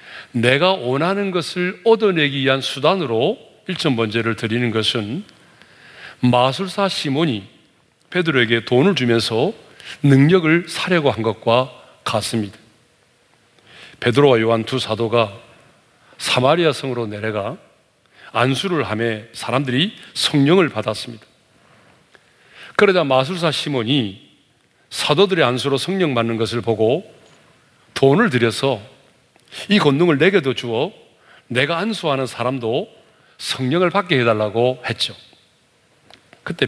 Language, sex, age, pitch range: Korean, male, 40-59, 115-165 Hz